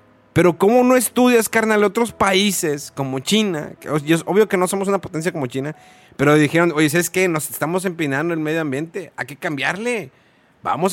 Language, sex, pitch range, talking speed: Spanish, male, 135-190 Hz, 175 wpm